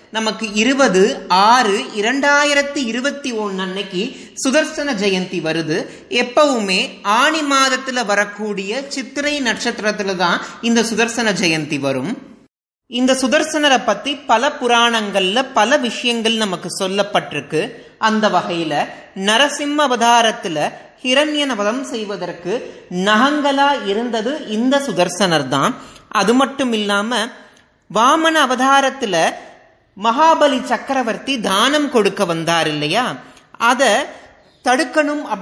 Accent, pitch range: native, 200-275 Hz